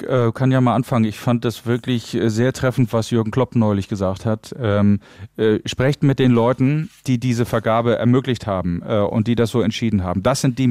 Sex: male